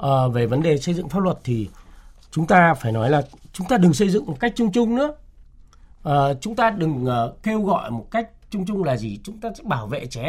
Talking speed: 235 wpm